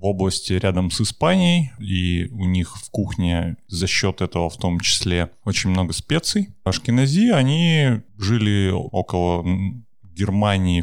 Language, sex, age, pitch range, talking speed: Russian, male, 20-39, 95-115 Hz, 135 wpm